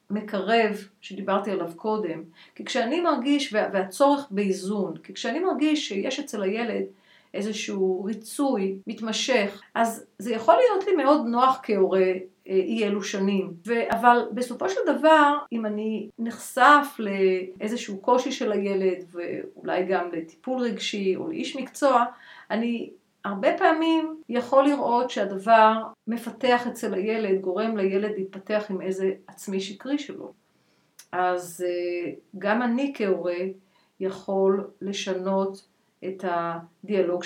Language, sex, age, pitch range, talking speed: Hebrew, female, 50-69, 190-245 Hz, 120 wpm